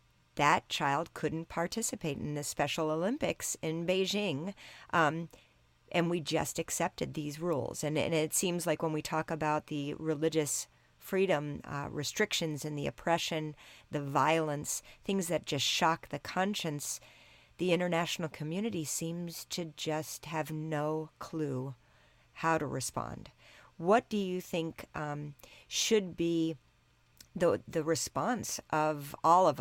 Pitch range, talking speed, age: 145-165 Hz, 135 wpm, 50-69